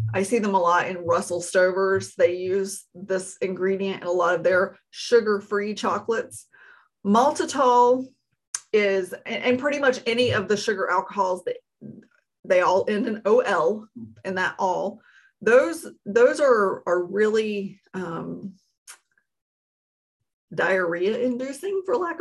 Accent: American